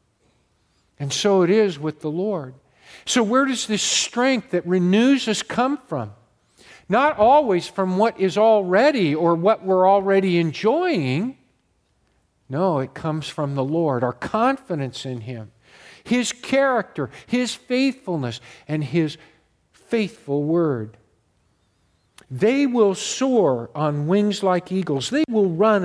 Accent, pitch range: American, 125-185 Hz